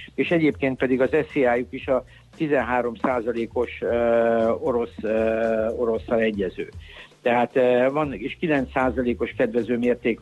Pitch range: 120-140 Hz